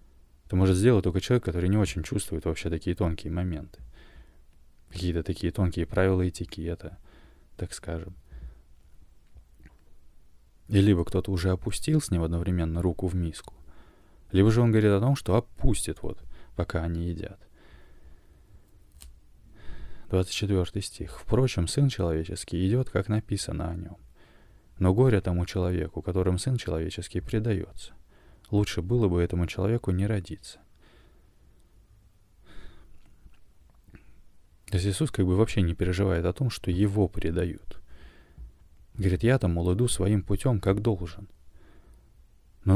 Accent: native